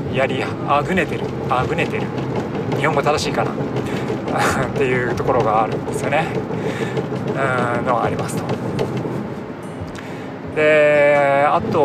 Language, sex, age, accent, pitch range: Japanese, male, 20-39, native, 120-160 Hz